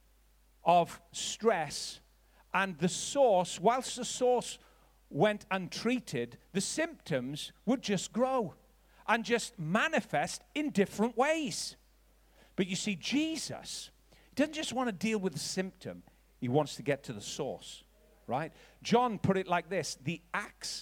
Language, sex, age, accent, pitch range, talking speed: English, male, 40-59, British, 155-205 Hz, 140 wpm